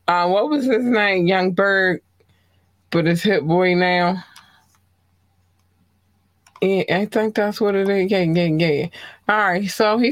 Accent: American